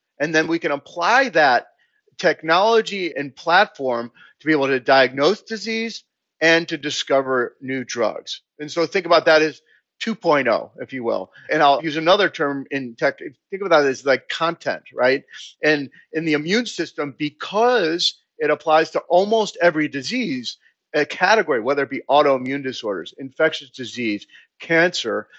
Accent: American